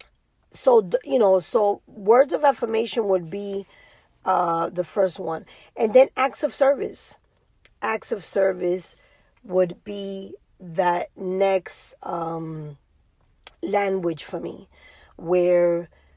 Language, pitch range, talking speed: English, 180-235 Hz, 110 wpm